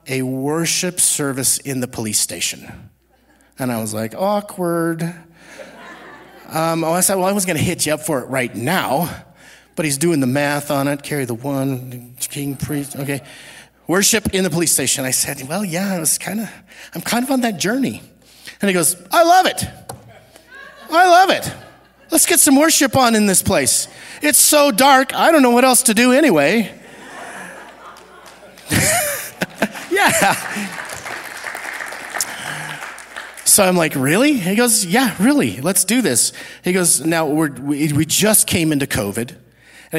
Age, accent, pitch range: 30-49, American, 140-205 Hz